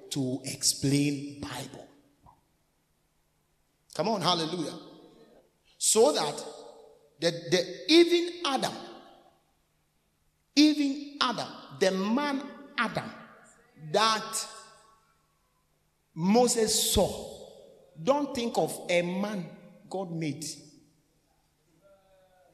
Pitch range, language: 160-250 Hz, English